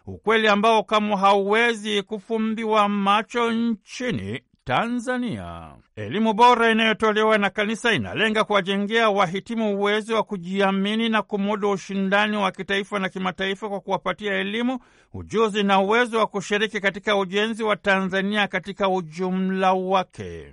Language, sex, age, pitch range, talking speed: Swahili, male, 60-79, 195-220 Hz, 125 wpm